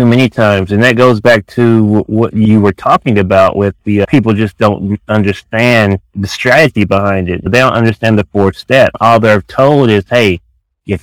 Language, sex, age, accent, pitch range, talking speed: English, male, 30-49, American, 95-115 Hz, 195 wpm